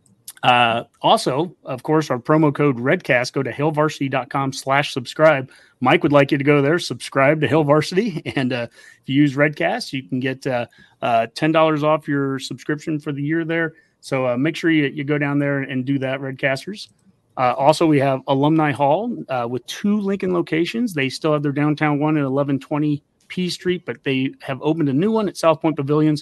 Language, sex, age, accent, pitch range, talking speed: English, male, 30-49, American, 135-160 Hz, 200 wpm